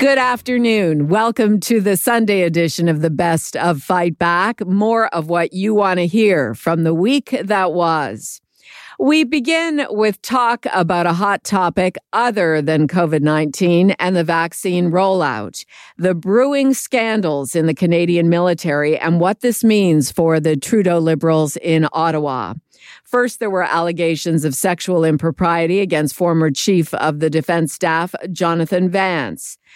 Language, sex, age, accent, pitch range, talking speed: English, female, 50-69, American, 165-205 Hz, 145 wpm